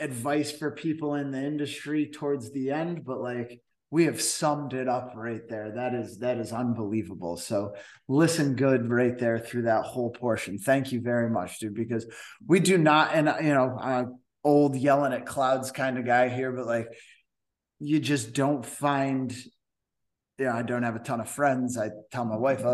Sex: male